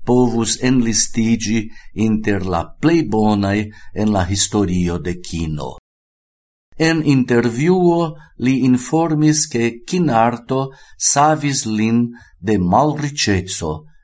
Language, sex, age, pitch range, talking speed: Portuguese, male, 60-79, 100-135 Hz, 85 wpm